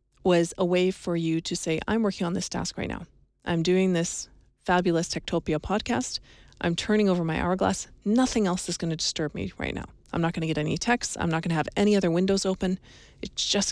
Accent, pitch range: American, 165-195 Hz